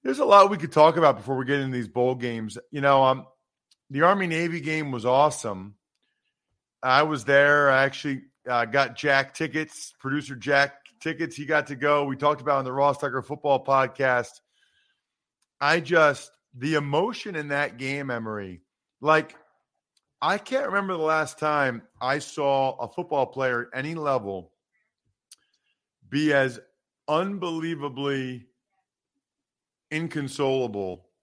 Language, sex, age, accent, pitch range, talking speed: English, male, 40-59, American, 125-165 Hz, 145 wpm